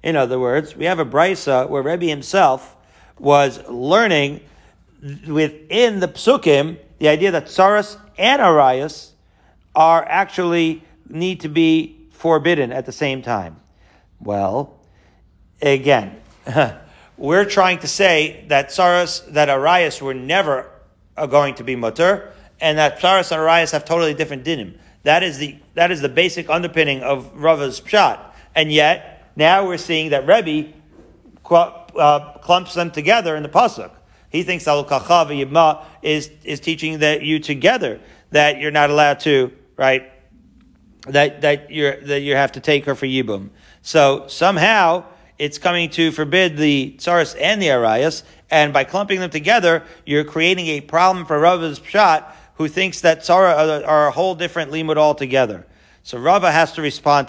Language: English